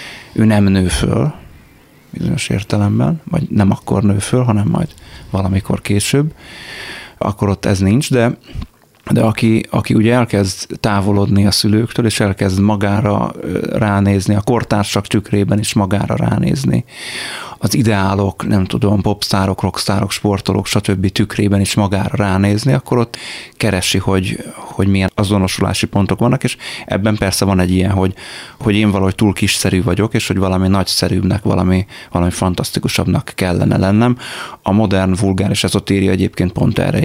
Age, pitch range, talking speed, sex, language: 30-49, 95-115 Hz, 145 wpm, male, Hungarian